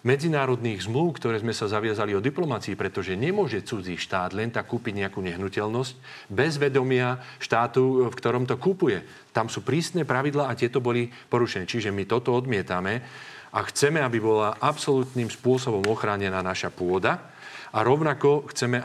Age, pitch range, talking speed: 40-59, 105-130 Hz, 155 wpm